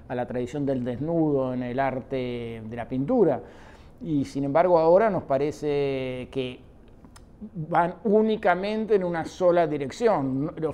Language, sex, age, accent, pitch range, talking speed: Spanish, male, 50-69, Argentinian, 135-180 Hz, 140 wpm